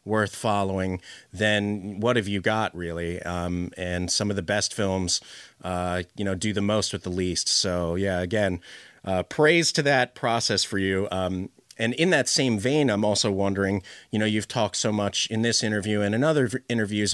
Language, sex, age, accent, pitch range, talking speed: English, male, 30-49, American, 100-115 Hz, 195 wpm